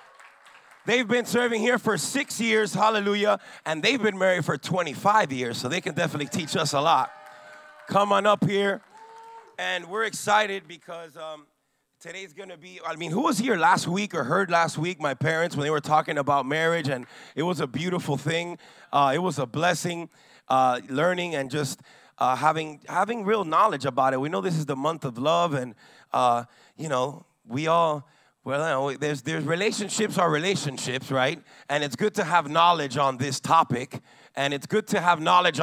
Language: English